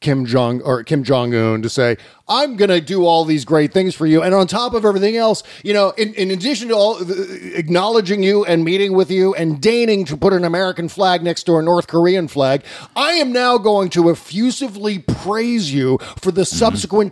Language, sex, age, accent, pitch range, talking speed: English, male, 40-59, American, 145-200 Hz, 215 wpm